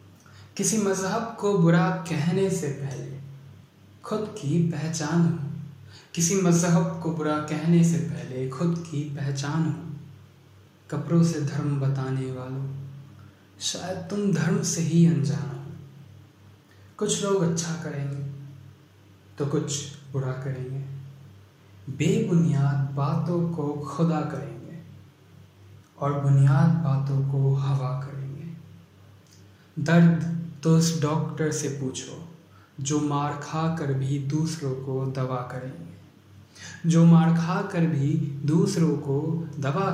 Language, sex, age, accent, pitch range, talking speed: Hindi, male, 20-39, native, 130-165 Hz, 115 wpm